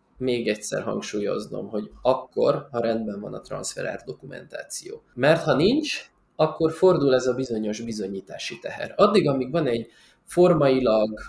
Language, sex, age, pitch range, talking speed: Hungarian, male, 20-39, 110-155 Hz, 135 wpm